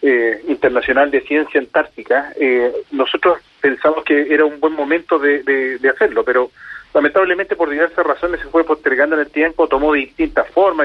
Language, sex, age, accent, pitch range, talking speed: Spanish, male, 40-59, Argentinian, 135-175 Hz, 170 wpm